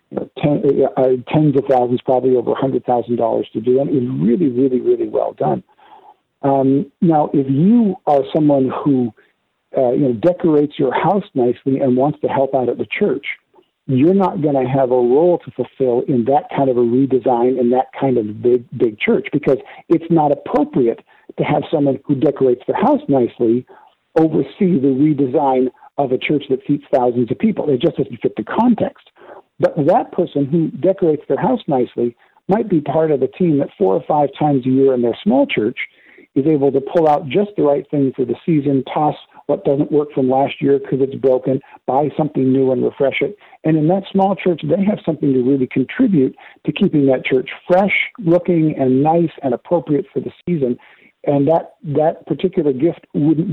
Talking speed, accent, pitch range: 195 wpm, American, 130-170 Hz